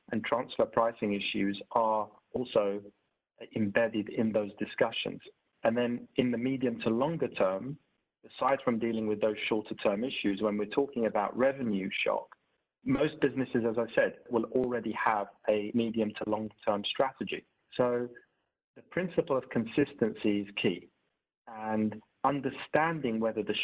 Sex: male